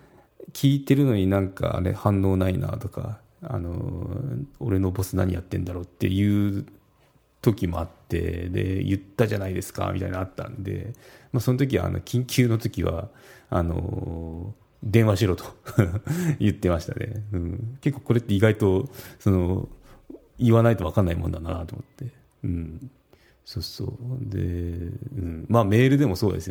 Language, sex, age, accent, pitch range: Japanese, male, 30-49, native, 90-120 Hz